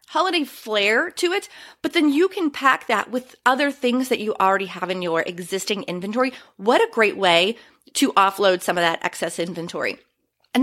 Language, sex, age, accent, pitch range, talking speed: English, female, 30-49, American, 205-275 Hz, 185 wpm